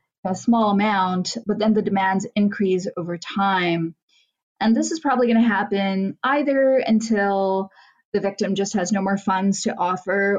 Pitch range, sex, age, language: 185-235 Hz, female, 20-39, English